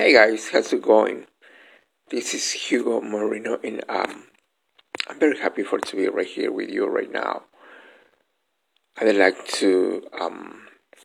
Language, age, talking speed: Spanish, 60-79, 145 wpm